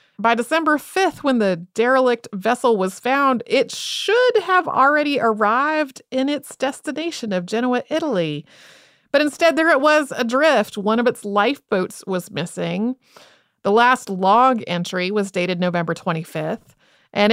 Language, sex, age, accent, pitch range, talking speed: English, female, 30-49, American, 190-255 Hz, 140 wpm